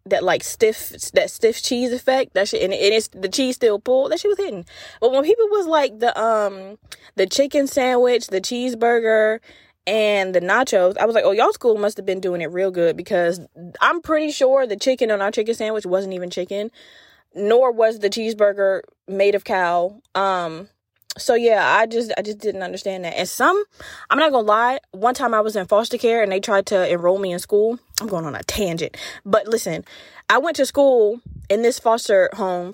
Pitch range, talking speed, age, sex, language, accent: 200-275 Hz, 210 wpm, 20-39, female, English, American